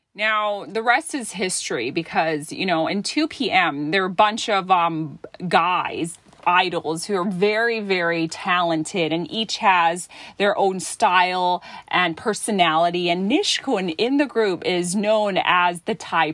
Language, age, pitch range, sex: Thai, 30-49, 175-230 Hz, female